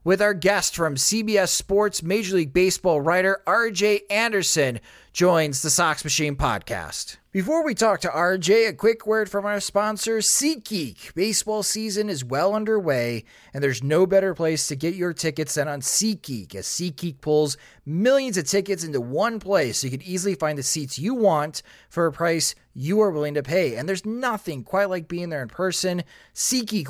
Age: 30-49